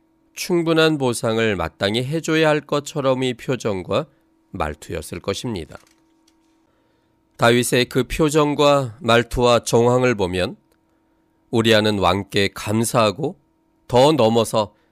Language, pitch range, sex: Korean, 110-150 Hz, male